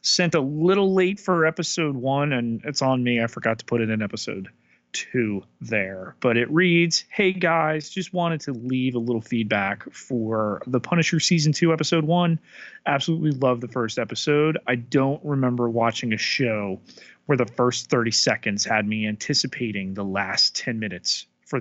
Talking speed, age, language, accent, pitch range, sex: 175 wpm, 30-49, English, American, 115-150 Hz, male